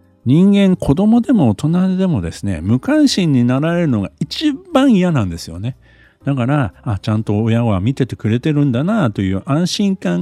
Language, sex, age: Japanese, male, 50-69